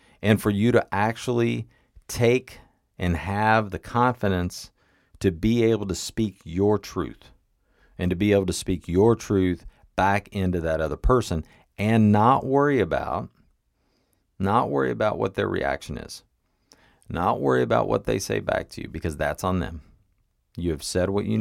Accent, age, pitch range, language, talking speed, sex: American, 40-59, 85-115 Hz, English, 165 wpm, male